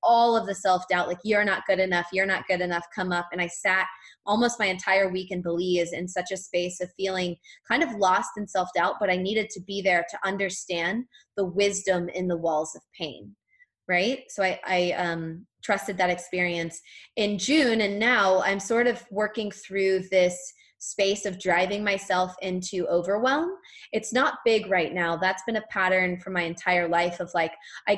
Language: English